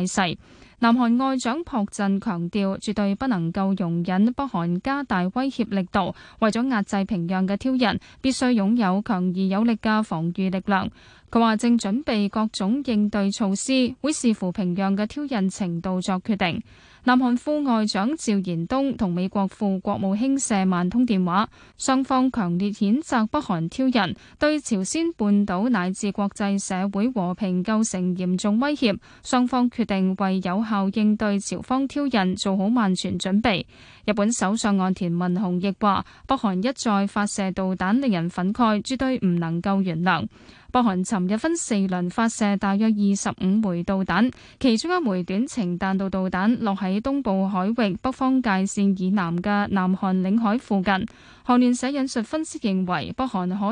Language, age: Chinese, 10-29